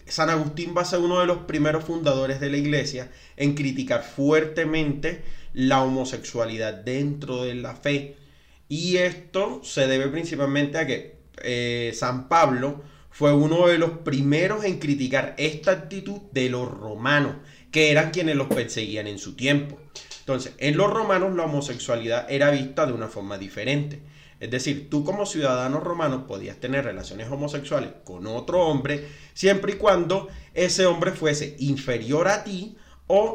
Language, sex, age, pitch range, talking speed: Spanish, male, 30-49, 130-175 Hz, 155 wpm